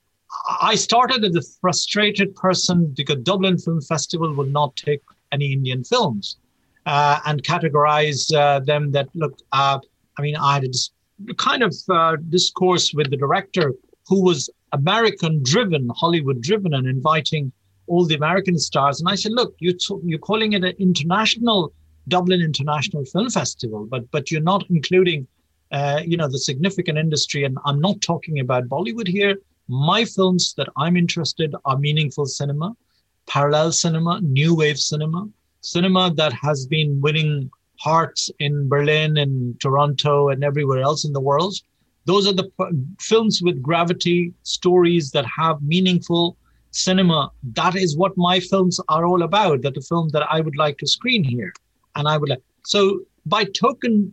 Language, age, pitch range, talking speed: English, 60-79, 145-185 Hz, 165 wpm